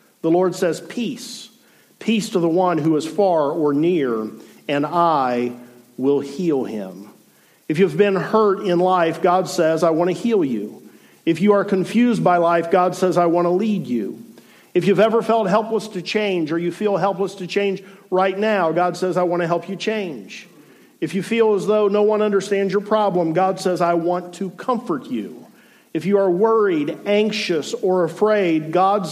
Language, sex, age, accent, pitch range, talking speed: English, male, 50-69, American, 165-205 Hz, 190 wpm